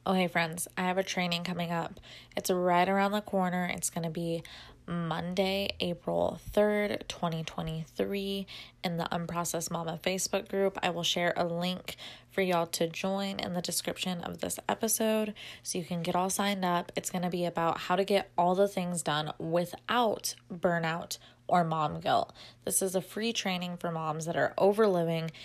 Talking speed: 180 wpm